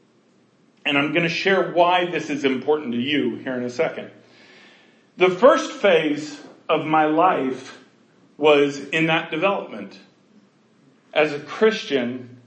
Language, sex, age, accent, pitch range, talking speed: English, male, 40-59, American, 145-195 Hz, 135 wpm